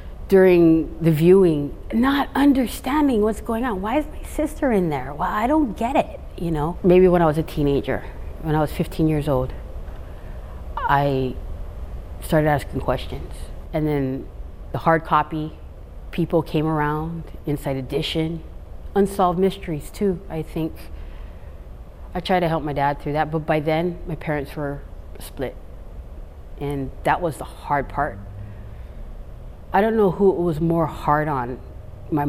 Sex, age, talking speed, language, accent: female, 30-49, 155 wpm, English, American